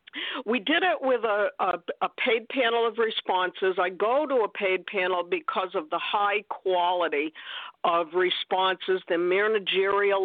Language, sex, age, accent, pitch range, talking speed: English, female, 50-69, American, 185-290 Hz, 150 wpm